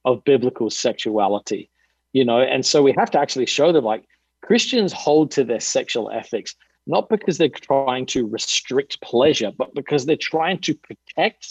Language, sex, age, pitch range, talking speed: English, male, 50-69, 120-160 Hz, 170 wpm